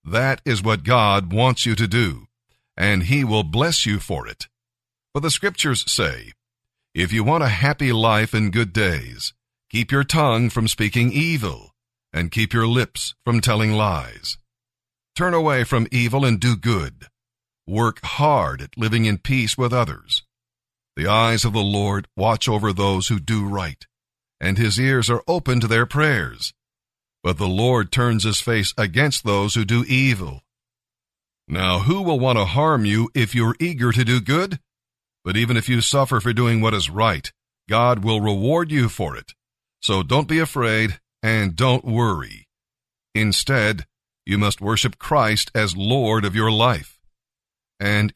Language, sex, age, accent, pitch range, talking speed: English, male, 50-69, American, 105-125 Hz, 165 wpm